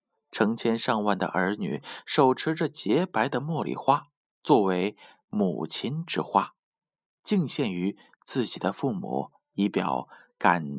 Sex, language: male, Chinese